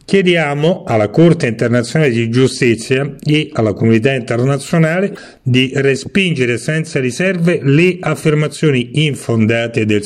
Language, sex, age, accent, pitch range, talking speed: Italian, male, 40-59, native, 115-150 Hz, 105 wpm